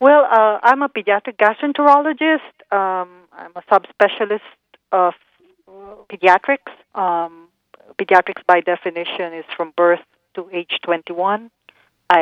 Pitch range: 170-195 Hz